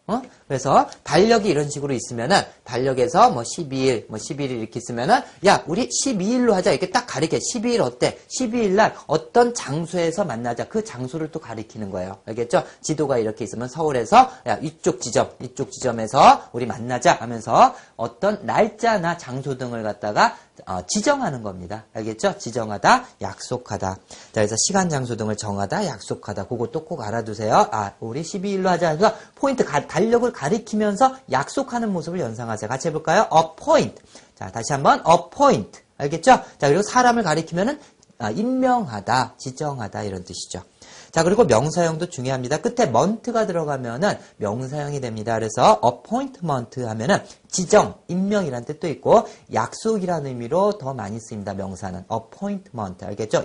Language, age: Korean, 40-59